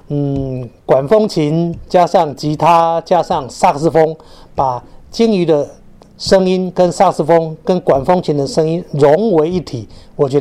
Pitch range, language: 135-175 Hz, Chinese